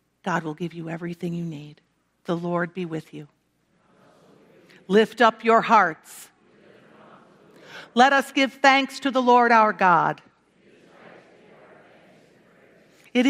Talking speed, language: 115 wpm, English